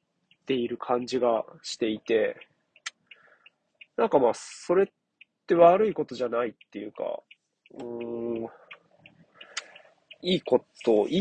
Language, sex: Japanese, male